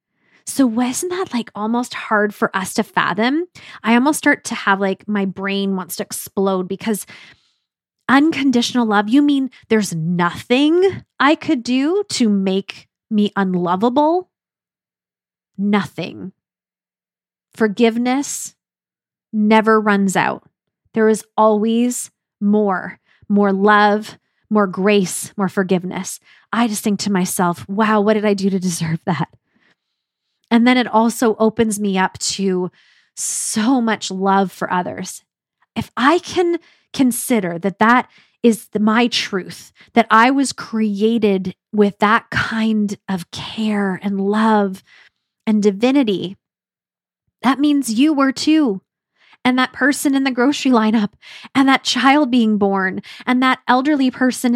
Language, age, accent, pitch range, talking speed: English, 20-39, American, 200-255 Hz, 130 wpm